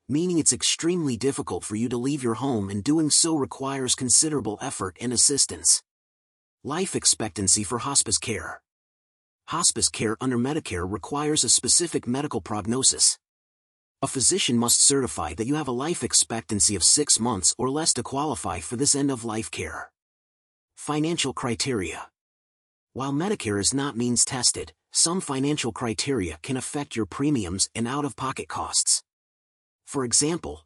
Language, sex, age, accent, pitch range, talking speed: English, male, 30-49, American, 105-145 Hz, 140 wpm